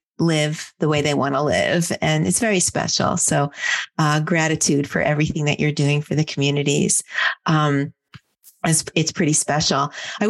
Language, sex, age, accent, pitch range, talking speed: English, female, 30-49, American, 165-225 Hz, 165 wpm